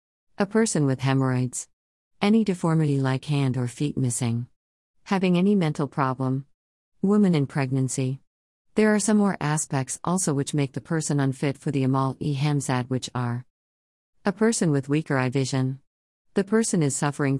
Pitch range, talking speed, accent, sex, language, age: 130-160 Hz, 160 wpm, American, female, English, 50-69